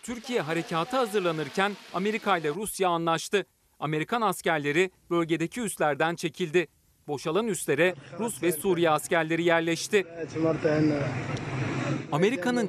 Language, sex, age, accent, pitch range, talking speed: Turkish, male, 40-59, native, 160-200 Hz, 95 wpm